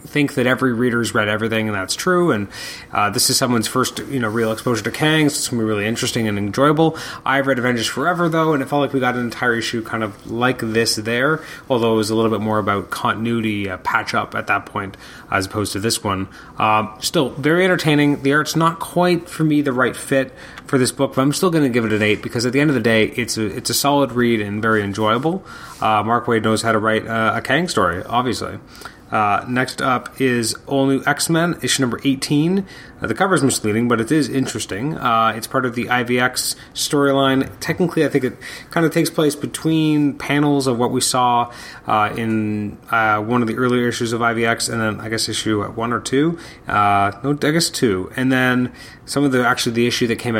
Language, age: English, 30-49